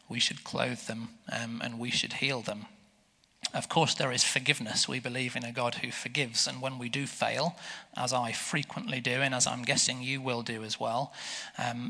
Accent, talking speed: British, 205 wpm